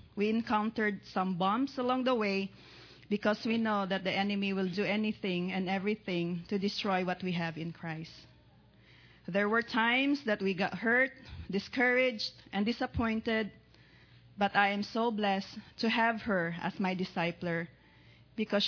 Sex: female